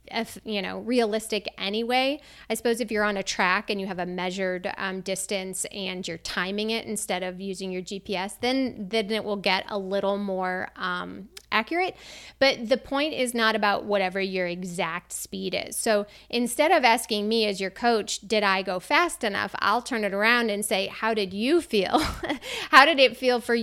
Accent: American